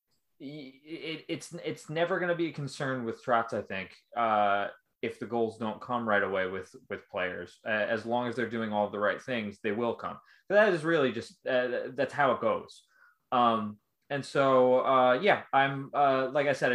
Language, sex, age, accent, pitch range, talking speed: English, male, 20-39, American, 110-135 Hz, 200 wpm